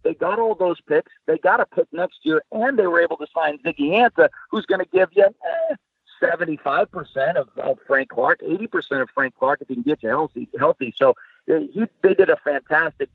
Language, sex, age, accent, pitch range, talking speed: English, male, 50-69, American, 135-215 Hz, 205 wpm